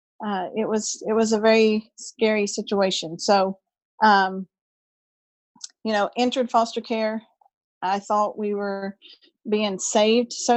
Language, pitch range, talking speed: English, 195-220 Hz, 130 wpm